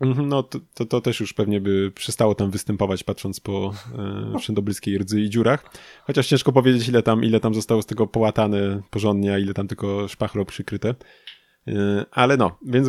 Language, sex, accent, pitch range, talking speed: Polish, male, native, 100-120 Hz, 185 wpm